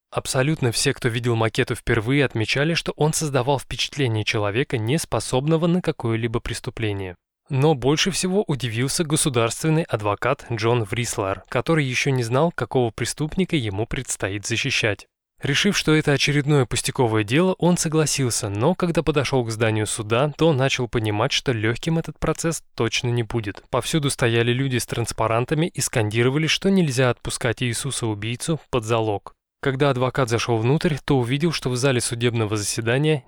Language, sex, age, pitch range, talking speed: Russian, male, 20-39, 115-145 Hz, 145 wpm